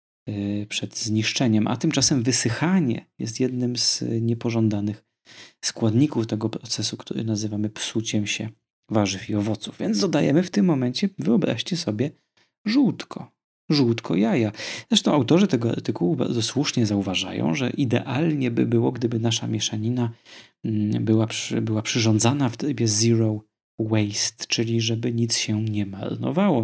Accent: native